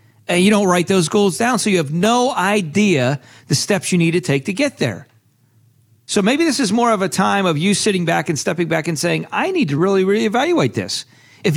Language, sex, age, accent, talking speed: English, male, 40-59, American, 240 wpm